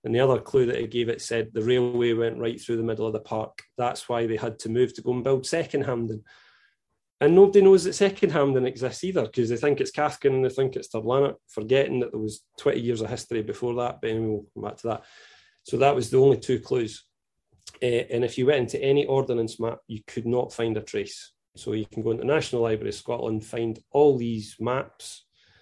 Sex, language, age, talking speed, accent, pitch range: male, English, 30-49, 235 wpm, British, 115-140 Hz